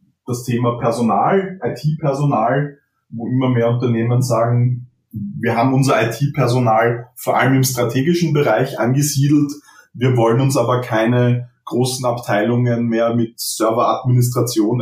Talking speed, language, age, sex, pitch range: 115 wpm, German, 30-49, male, 120-140 Hz